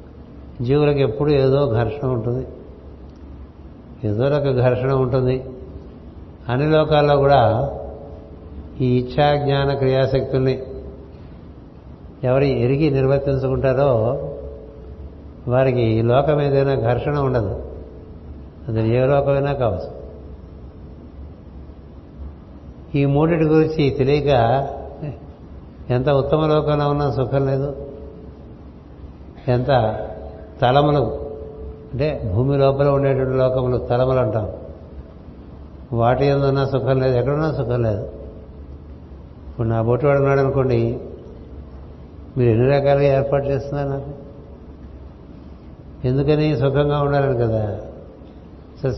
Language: Telugu